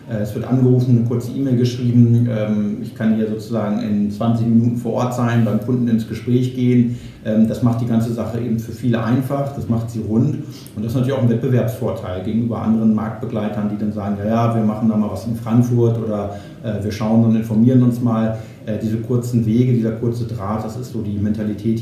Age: 50-69